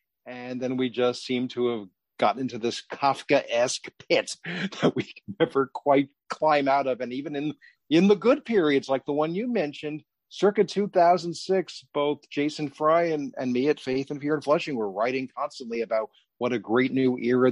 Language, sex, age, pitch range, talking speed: English, male, 40-59, 130-175 Hz, 190 wpm